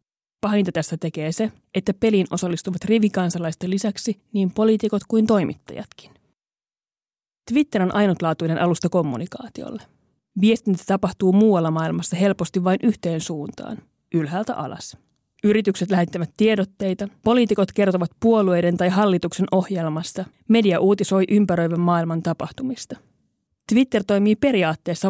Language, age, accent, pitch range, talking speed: Finnish, 30-49, native, 175-205 Hz, 110 wpm